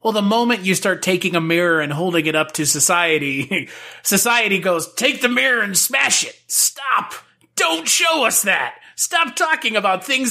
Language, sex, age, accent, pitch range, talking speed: English, male, 30-49, American, 150-195 Hz, 180 wpm